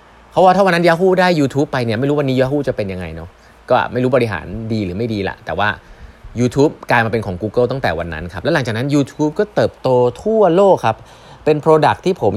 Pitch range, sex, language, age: 105-145 Hz, male, Thai, 20-39